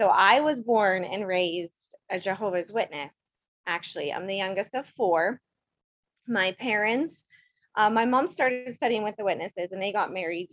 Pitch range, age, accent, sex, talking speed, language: 175-215 Hz, 20-39, American, female, 165 wpm, English